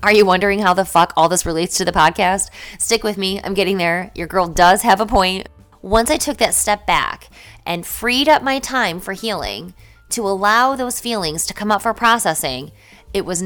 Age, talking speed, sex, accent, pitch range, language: 20-39, 215 wpm, female, American, 170-220 Hz, English